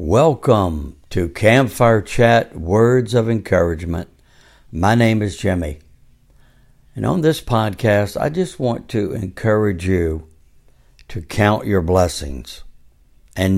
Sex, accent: male, American